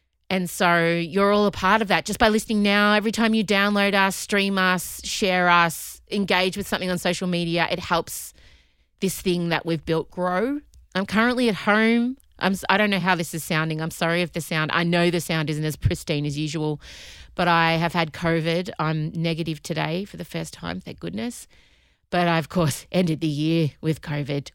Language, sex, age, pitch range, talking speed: English, female, 30-49, 155-205 Hz, 210 wpm